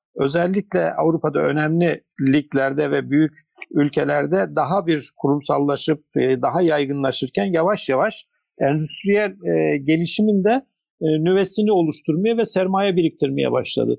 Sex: male